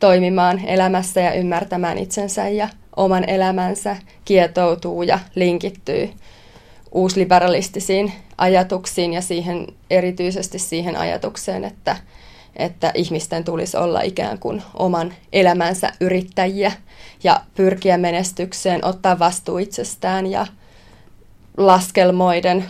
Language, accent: Finnish, native